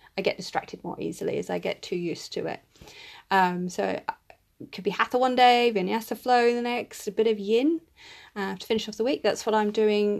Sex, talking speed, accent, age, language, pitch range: female, 230 wpm, British, 30-49, English, 190-225 Hz